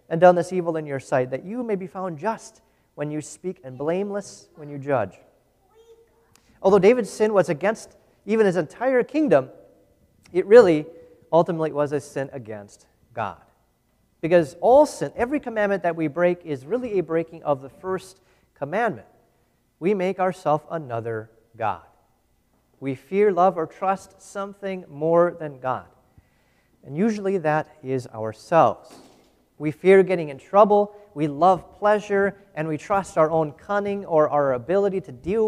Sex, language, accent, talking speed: male, English, American, 155 wpm